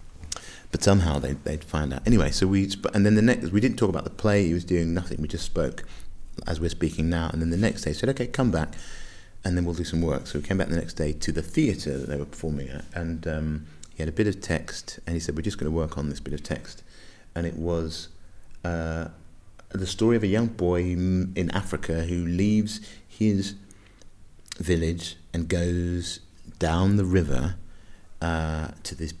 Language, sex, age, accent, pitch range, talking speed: English, male, 30-49, British, 80-95 Hz, 215 wpm